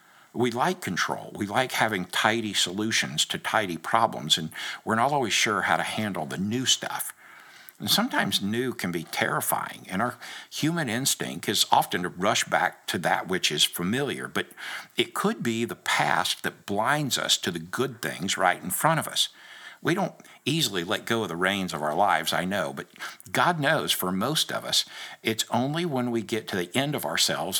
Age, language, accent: 60-79, English, American